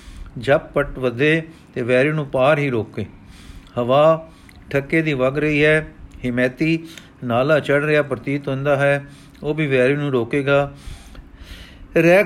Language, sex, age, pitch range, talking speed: Punjabi, male, 50-69, 130-155 Hz, 130 wpm